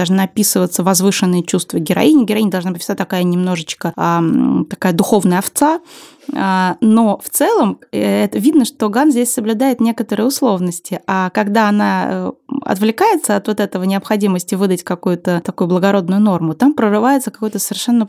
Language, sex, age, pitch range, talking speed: Russian, female, 20-39, 180-225 Hz, 140 wpm